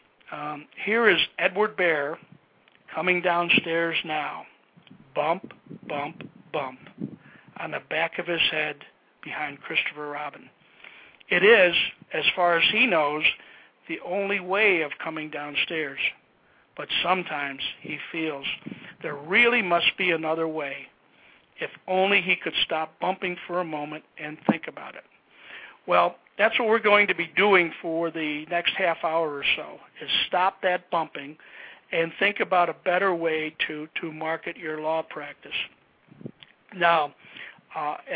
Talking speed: 140 wpm